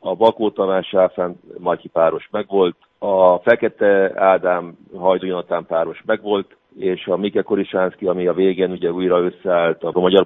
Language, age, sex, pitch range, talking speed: Hungarian, 50-69, male, 90-105 Hz, 125 wpm